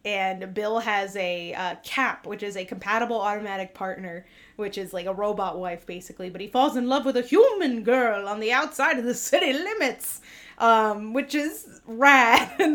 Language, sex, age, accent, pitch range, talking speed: English, female, 30-49, American, 205-290 Hz, 190 wpm